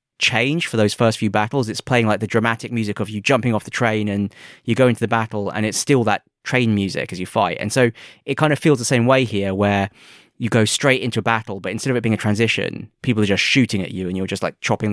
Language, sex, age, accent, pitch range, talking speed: English, male, 20-39, British, 105-120 Hz, 275 wpm